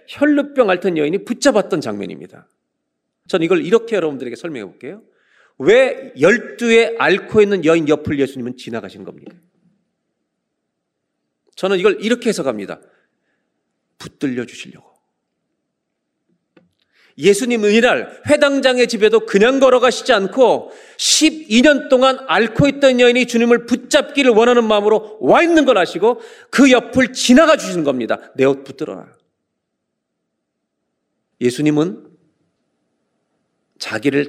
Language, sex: Korean, male